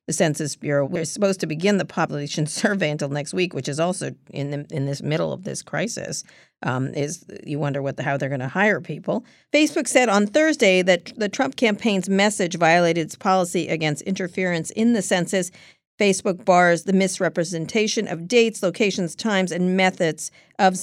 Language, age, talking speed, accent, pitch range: English, 50-69, 185 wpm, American, 155-210 Hz